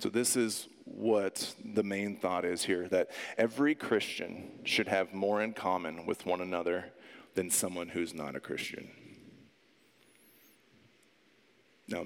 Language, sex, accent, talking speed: English, male, American, 135 wpm